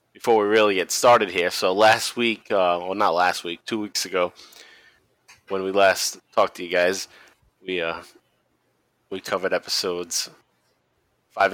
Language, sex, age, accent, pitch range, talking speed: English, male, 20-39, American, 100-120 Hz, 155 wpm